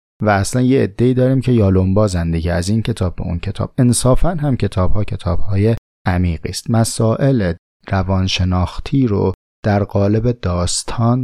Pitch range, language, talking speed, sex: 90-115 Hz, Persian, 150 wpm, male